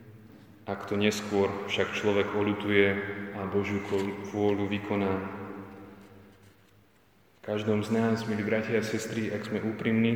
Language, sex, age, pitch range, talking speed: Slovak, male, 20-39, 100-110 Hz, 125 wpm